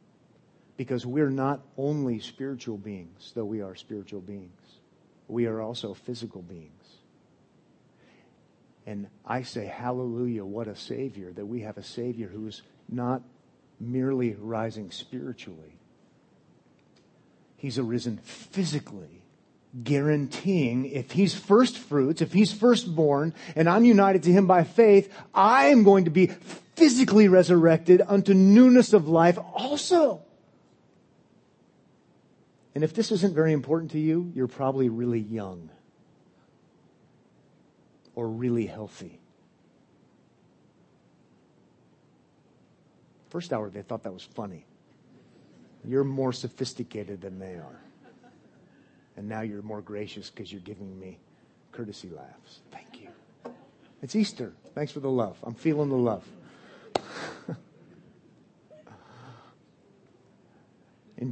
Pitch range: 110-165 Hz